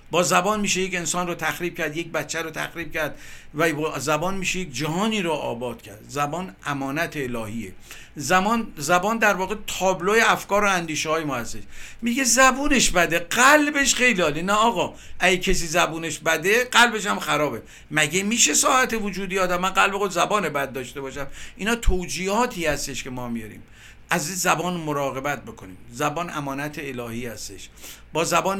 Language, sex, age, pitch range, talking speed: Persian, male, 50-69, 145-185 Hz, 160 wpm